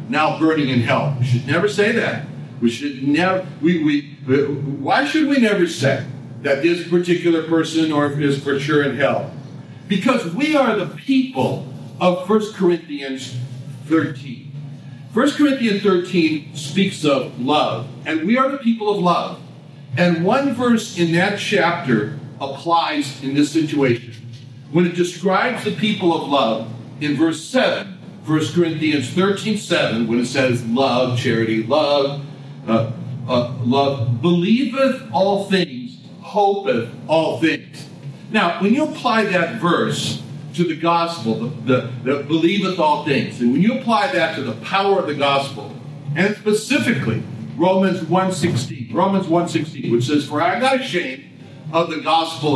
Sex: male